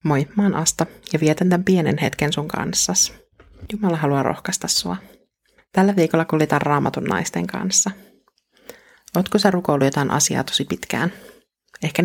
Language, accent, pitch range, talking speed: Finnish, native, 150-185 Hz, 135 wpm